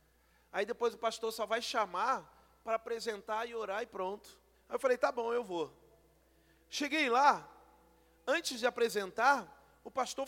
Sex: male